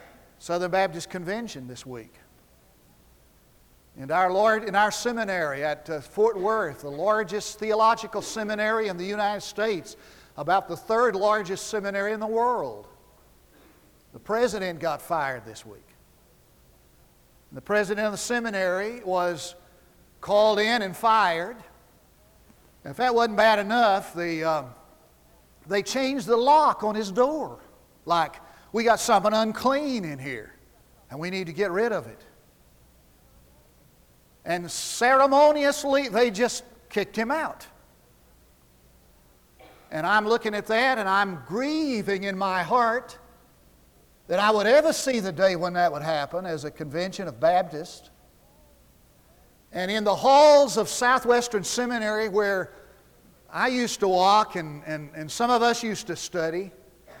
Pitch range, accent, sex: 155-225 Hz, American, male